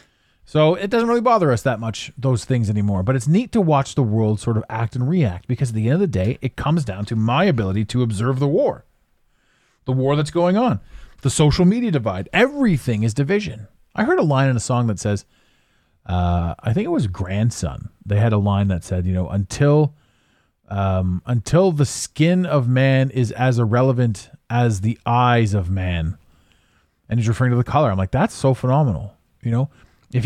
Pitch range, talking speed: 105-155 Hz, 205 wpm